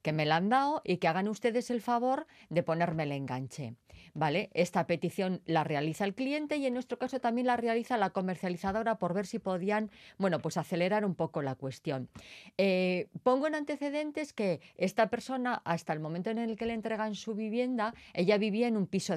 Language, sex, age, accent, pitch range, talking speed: Spanish, female, 30-49, Spanish, 165-230 Hz, 200 wpm